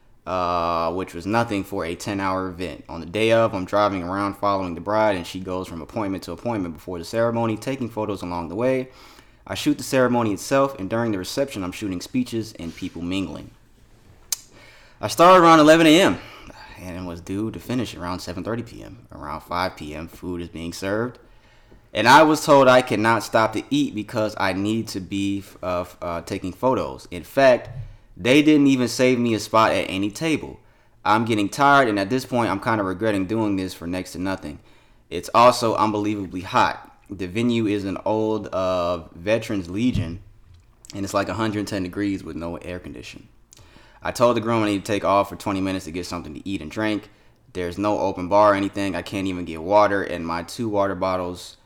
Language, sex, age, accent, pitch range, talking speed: English, male, 20-39, American, 90-115 Hz, 200 wpm